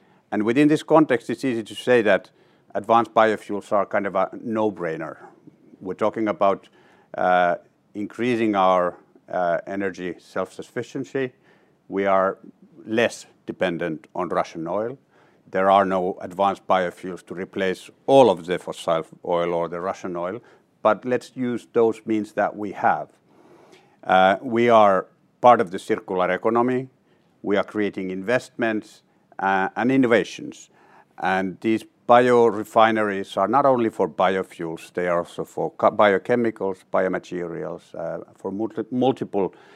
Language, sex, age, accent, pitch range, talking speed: English, male, 50-69, Finnish, 95-115 Hz, 135 wpm